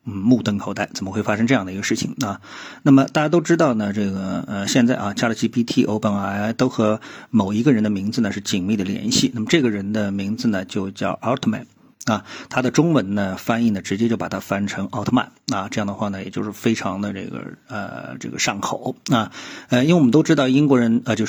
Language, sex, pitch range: Chinese, male, 100-115 Hz